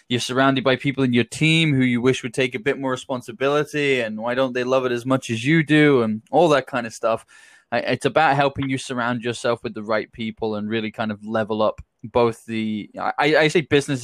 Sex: male